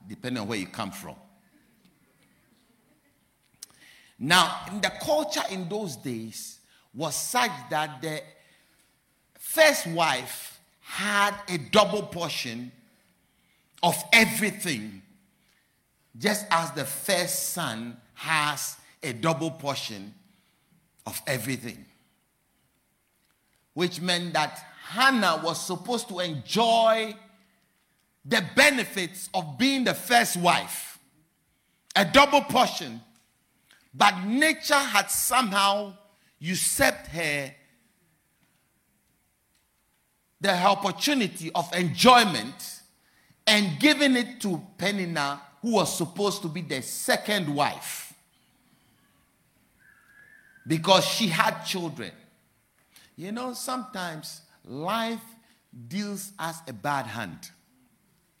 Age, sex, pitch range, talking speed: 50-69, male, 150-220 Hz, 90 wpm